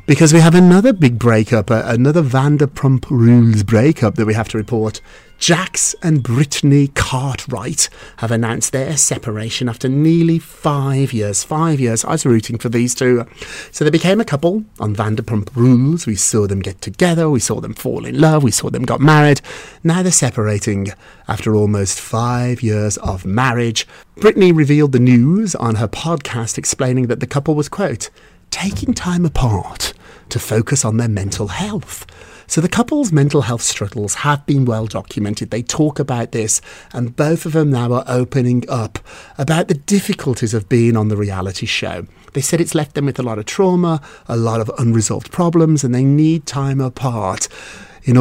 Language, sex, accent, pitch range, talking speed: English, male, British, 110-150 Hz, 180 wpm